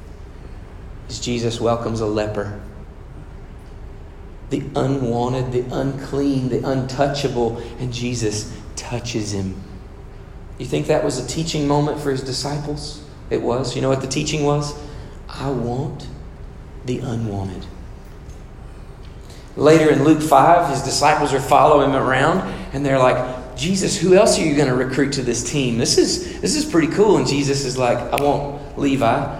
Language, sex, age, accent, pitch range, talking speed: English, male, 40-59, American, 105-145 Hz, 150 wpm